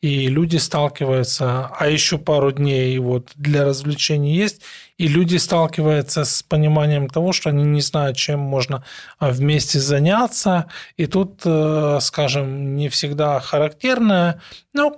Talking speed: 130 wpm